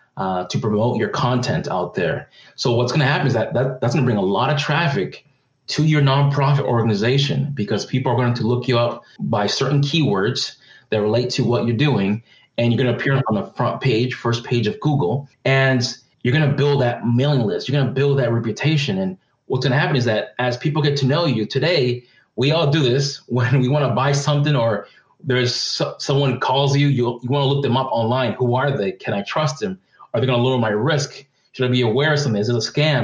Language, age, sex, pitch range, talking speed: English, 30-49, male, 120-145 Hz, 240 wpm